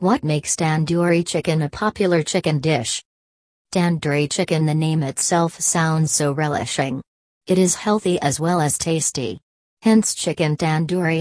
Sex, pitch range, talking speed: female, 145-180 Hz, 140 wpm